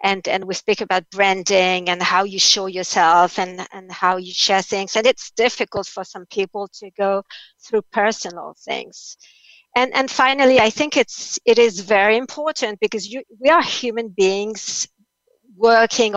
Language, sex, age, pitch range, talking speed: English, female, 50-69, 195-245 Hz, 165 wpm